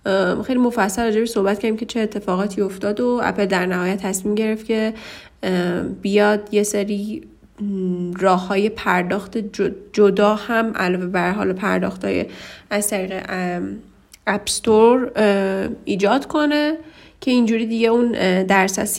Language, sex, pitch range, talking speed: Persian, female, 200-235 Hz, 115 wpm